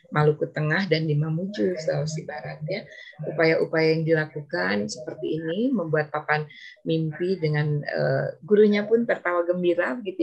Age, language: 30-49, Indonesian